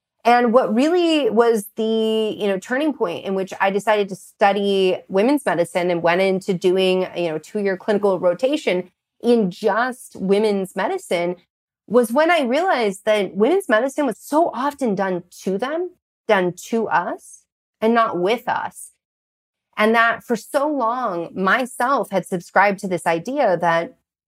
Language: English